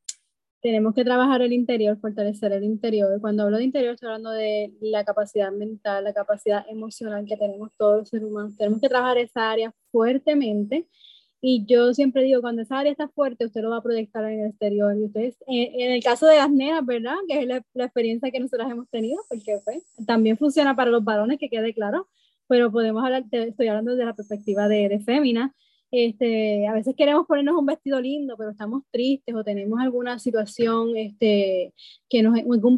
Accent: American